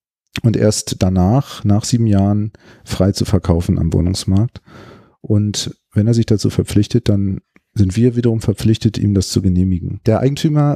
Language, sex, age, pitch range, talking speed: German, male, 40-59, 95-120 Hz, 155 wpm